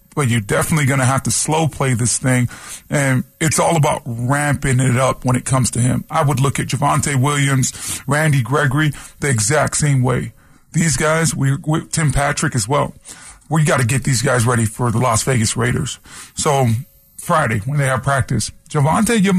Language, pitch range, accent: English, 130-165 Hz, American